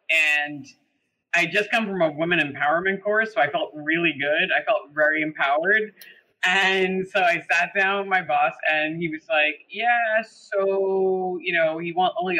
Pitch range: 170-220 Hz